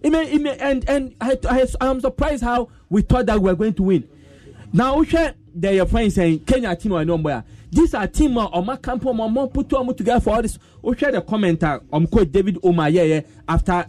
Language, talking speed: English, 215 wpm